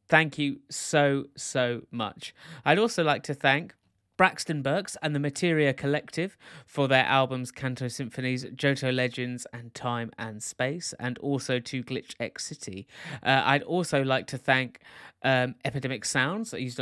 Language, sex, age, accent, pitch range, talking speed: English, male, 30-49, British, 120-150 Hz, 155 wpm